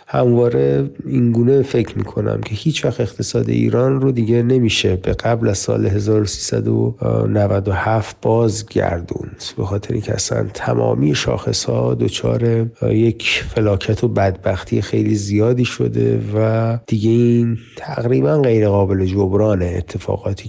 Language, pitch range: Persian, 105-130 Hz